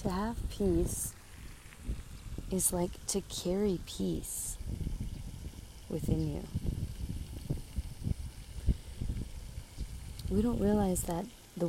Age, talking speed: 30-49, 75 wpm